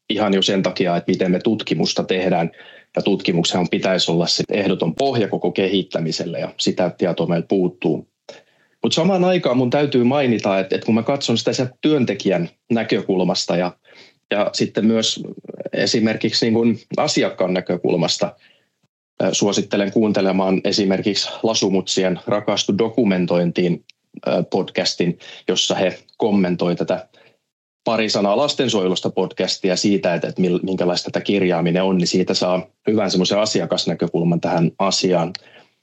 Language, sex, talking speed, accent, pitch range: Finnish, male, 125 wpm, native, 90-115 Hz